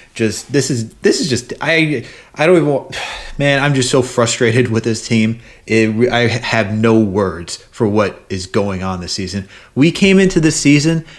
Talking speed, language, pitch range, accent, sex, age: 200 wpm, English, 110-130 Hz, American, male, 30-49